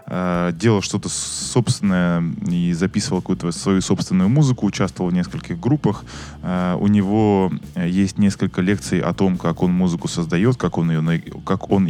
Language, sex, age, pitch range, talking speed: Russian, male, 20-39, 90-115 Hz, 130 wpm